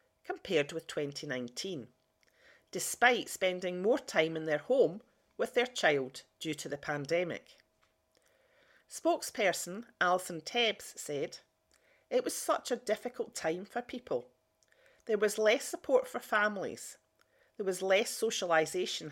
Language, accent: English, British